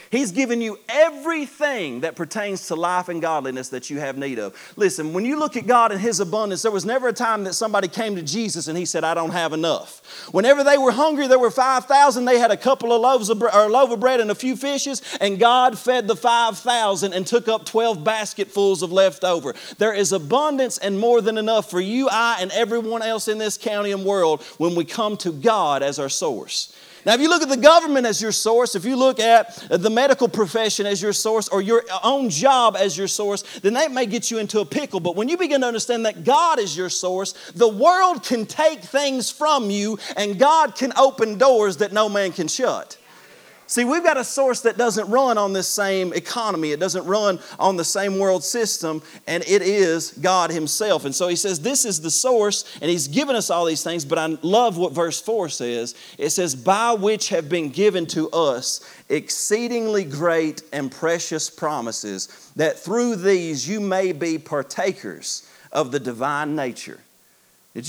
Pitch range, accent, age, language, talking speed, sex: 175-240 Hz, American, 40-59, English, 210 wpm, male